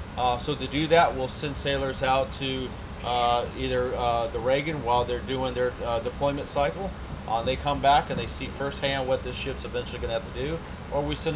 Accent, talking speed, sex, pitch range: American, 220 wpm, male, 120-140 Hz